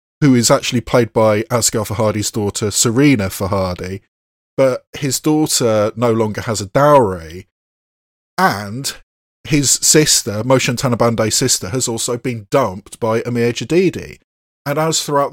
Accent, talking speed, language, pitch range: British, 130 wpm, English, 105-140 Hz